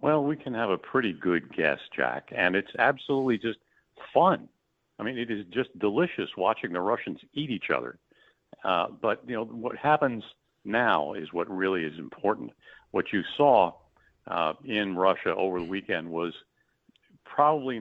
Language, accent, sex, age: English, American, male, 50-69